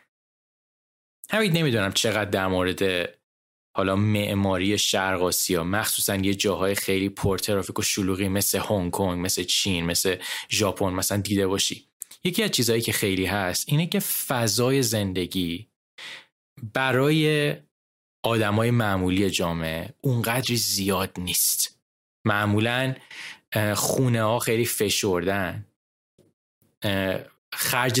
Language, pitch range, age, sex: Persian, 95-120 Hz, 20-39, male